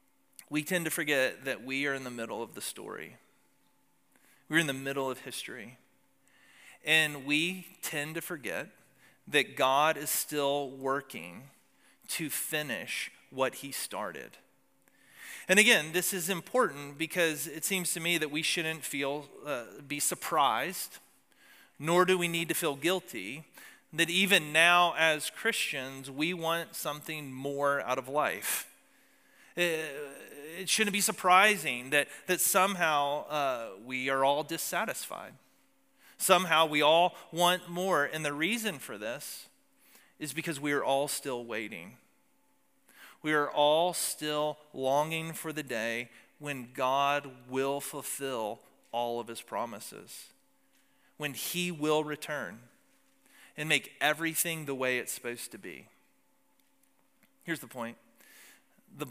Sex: male